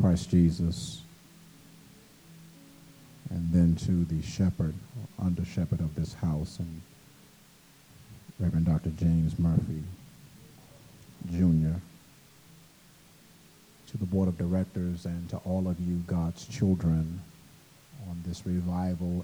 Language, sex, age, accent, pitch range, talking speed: English, male, 50-69, American, 85-100 Hz, 105 wpm